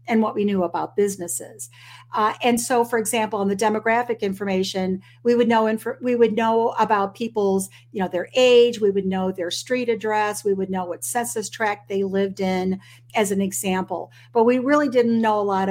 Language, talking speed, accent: English, 190 wpm, American